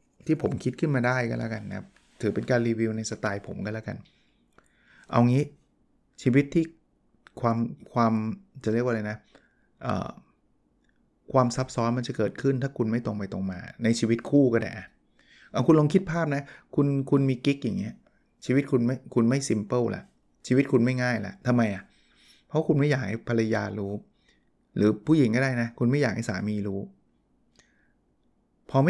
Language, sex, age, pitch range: Thai, male, 20-39, 110-140 Hz